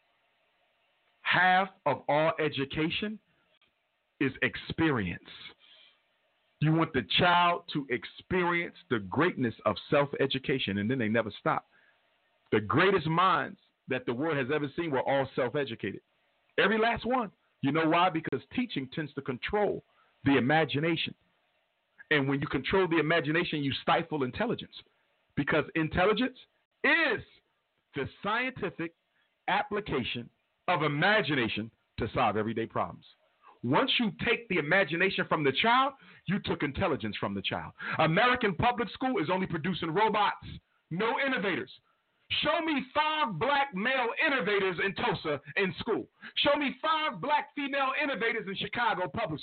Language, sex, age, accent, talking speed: English, male, 50-69, American, 130 wpm